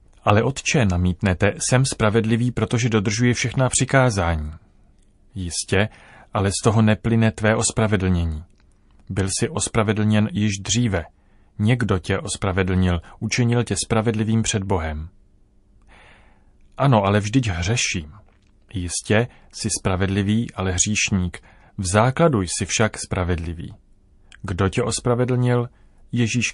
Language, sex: Czech, male